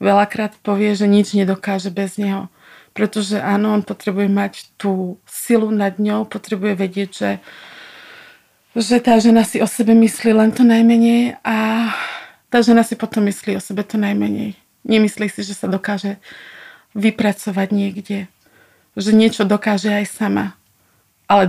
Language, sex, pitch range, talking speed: Slovak, female, 195-220 Hz, 145 wpm